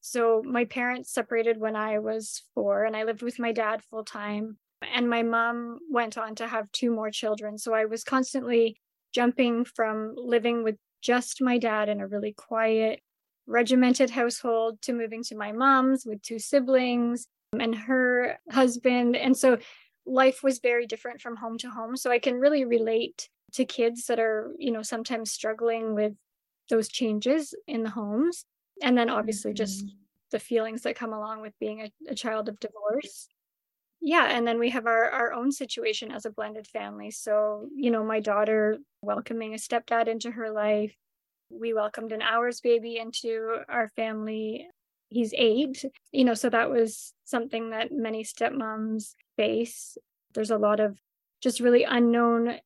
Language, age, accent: English, 20-39, American